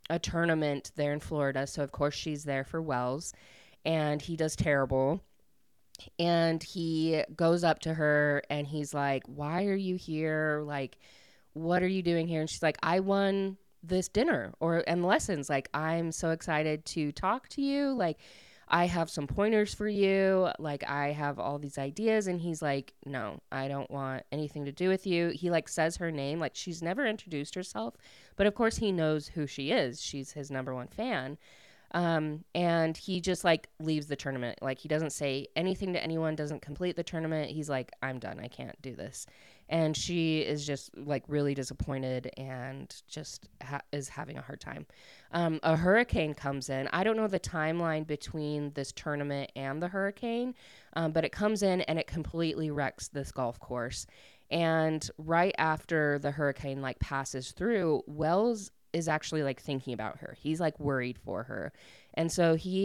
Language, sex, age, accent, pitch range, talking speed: English, female, 20-39, American, 140-170 Hz, 185 wpm